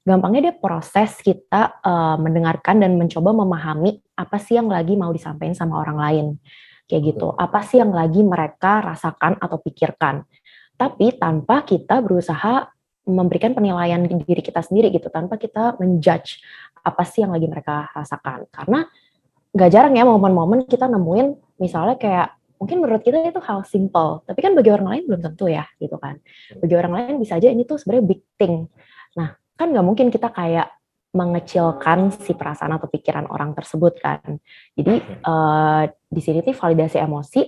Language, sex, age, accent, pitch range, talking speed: Indonesian, female, 20-39, native, 165-215 Hz, 165 wpm